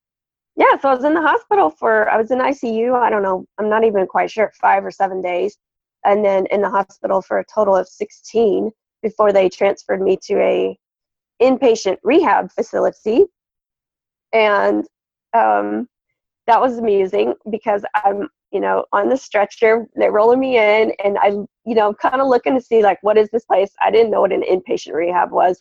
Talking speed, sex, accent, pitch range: 190 wpm, female, American, 200-260 Hz